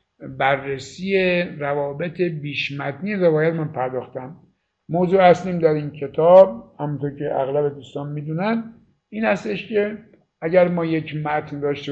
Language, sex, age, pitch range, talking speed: Persian, male, 60-79, 145-190 Hz, 120 wpm